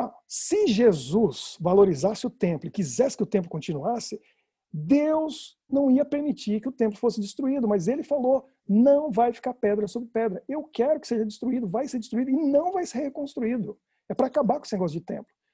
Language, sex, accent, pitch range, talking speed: Portuguese, male, Brazilian, 200-255 Hz, 195 wpm